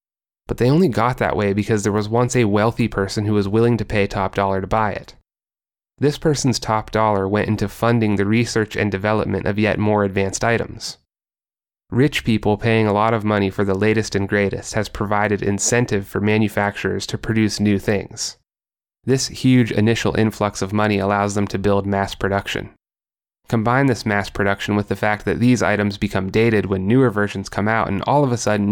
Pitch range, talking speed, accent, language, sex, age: 100-110 Hz, 195 wpm, American, English, male, 30-49